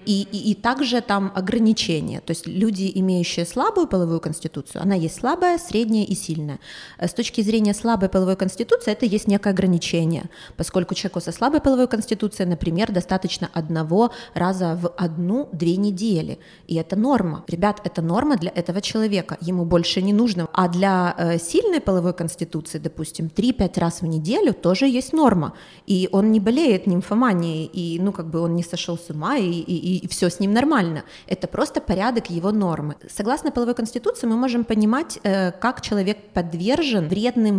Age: 20-39